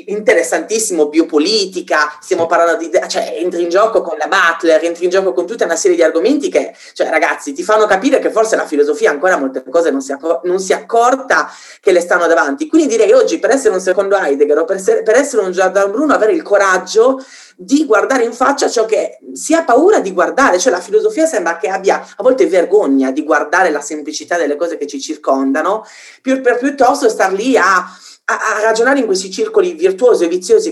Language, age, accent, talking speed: Italian, 30-49, native, 205 wpm